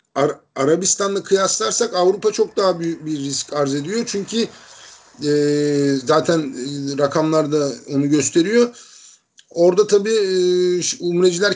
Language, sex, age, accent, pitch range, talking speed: Turkish, male, 50-69, native, 145-185 Hz, 100 wpm